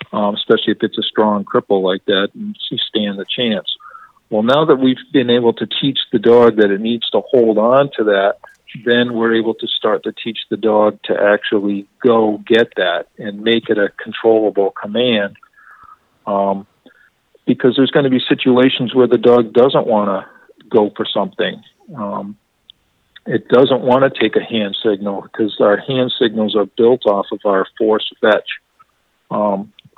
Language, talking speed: English, 180 wpm